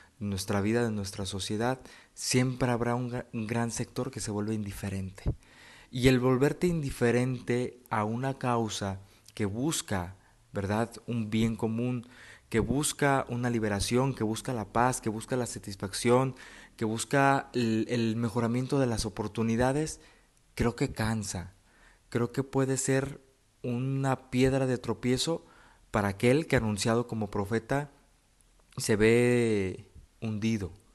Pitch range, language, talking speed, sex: 105-125 Hz, Spanish, 130 wpm, male